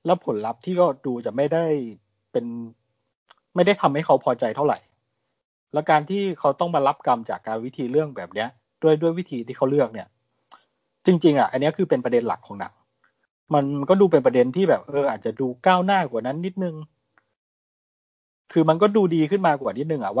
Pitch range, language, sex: 130-195 Hz, Thai, male